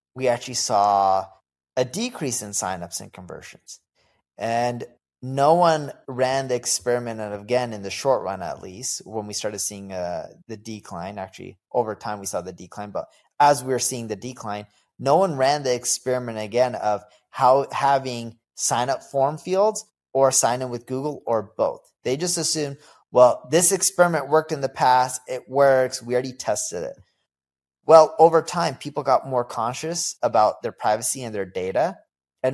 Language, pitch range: English, 105-135 Hz